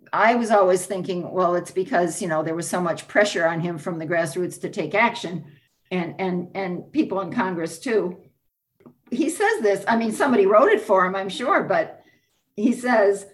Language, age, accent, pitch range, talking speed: English, 50-69, American, 185-235 Hz, 200 wpm